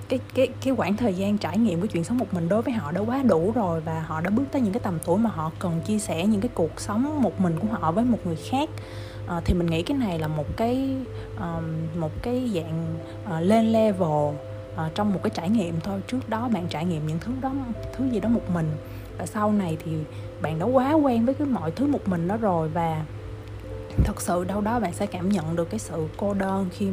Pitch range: 145-215 Hz